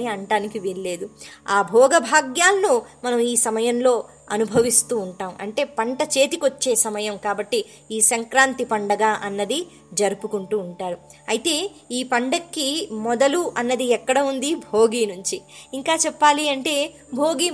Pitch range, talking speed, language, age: 215-285 Hz, 115 wpm, Telugu, 20-39